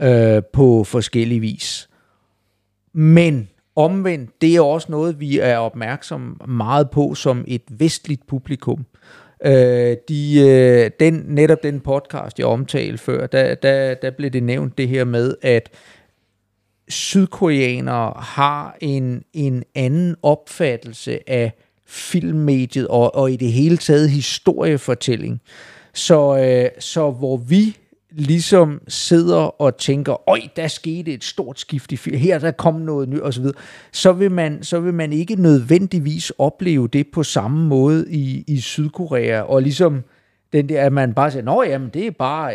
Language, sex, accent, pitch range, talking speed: Danish, male, native, 125-160 Hz, 140 wpm